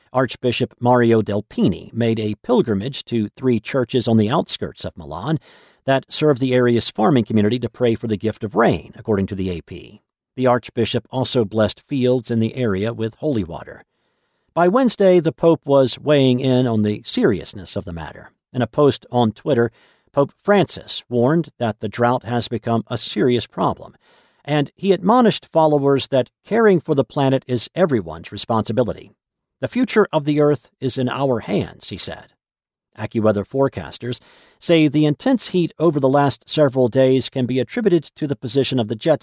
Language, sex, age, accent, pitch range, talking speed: English, male, 50-69, American, 110-140 Hz, 175 wpm